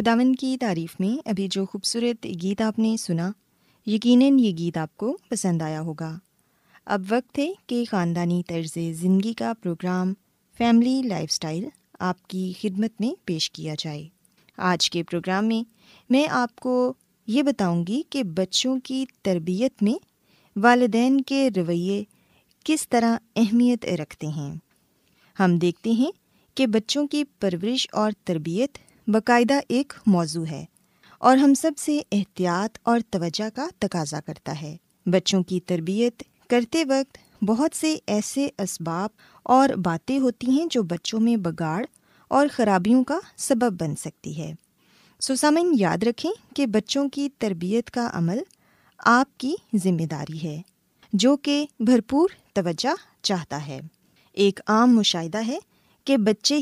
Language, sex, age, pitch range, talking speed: Urdu, female, 20-39, 180-255 Hz, 145 wpm